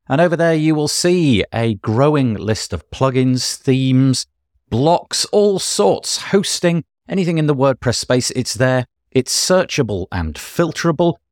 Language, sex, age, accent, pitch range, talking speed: English, male, 40-59, British, 95-150 Hz, 145 wpm